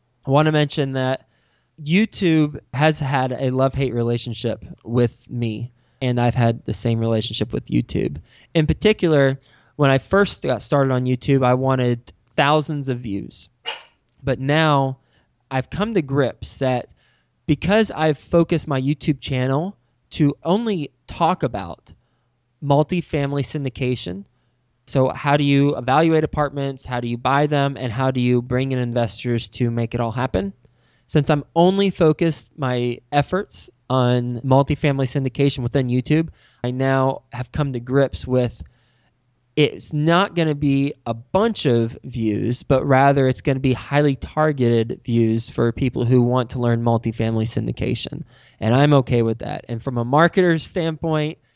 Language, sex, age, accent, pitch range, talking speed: English, male, 20-39, American, 120-145 Hz, 150 wpm